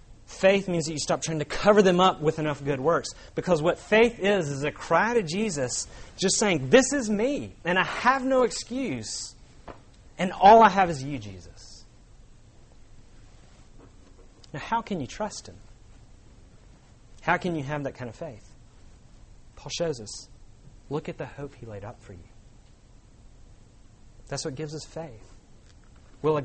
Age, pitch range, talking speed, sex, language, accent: 30-49, 115-185 Hz, 165 wpm, male, English, American